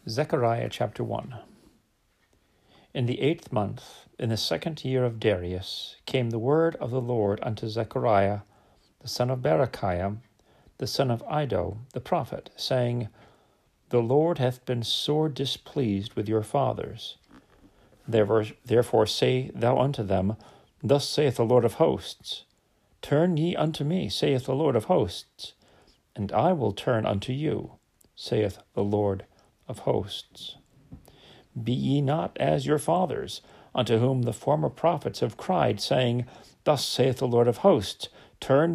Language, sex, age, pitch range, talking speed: English, male, 40-59, 105-140 Hz, 140 wpm